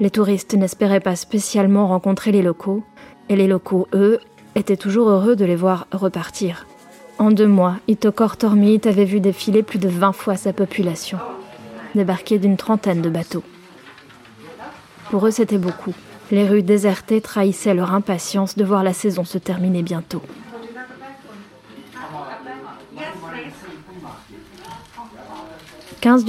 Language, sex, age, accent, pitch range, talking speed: French, female, 20-39, French, 190-220 Hz, 130 wpm